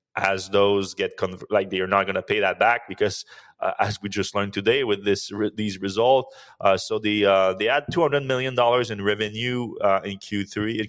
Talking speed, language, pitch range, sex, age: 215 wpm, English, 100-120 Hz, male, 20-39